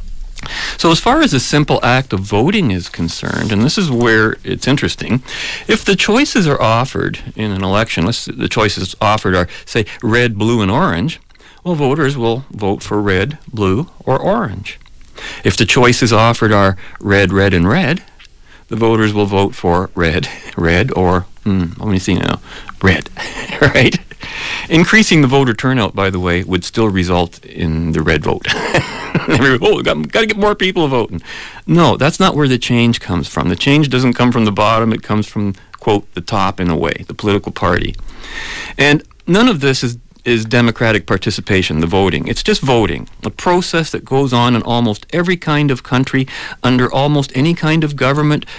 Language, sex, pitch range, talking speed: English, male, 105-150 Hz, 180 wpm